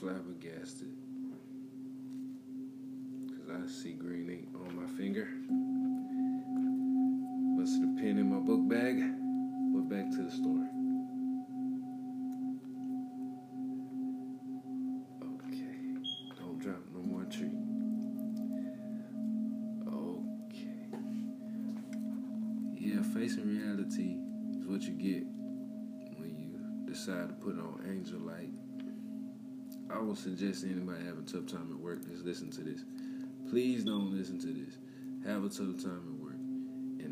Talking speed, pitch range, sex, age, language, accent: 110 wpm, 225-260 Hz, male, 40-59, English, American